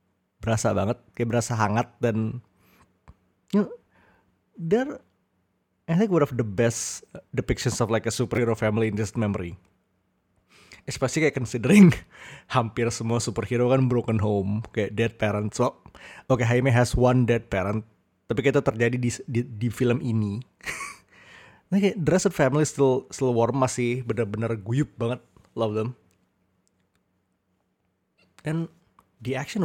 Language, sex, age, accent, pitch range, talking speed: Indonesian, male, 20-39, native, 105-125 Hz, 135 wpm